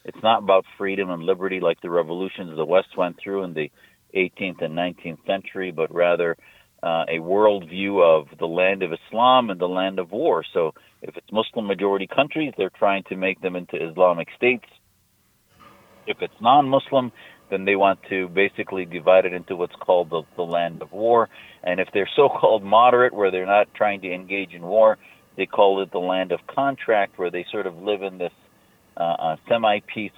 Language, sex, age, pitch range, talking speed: English, male, 50-69, 90-105 Hz, 190 wpm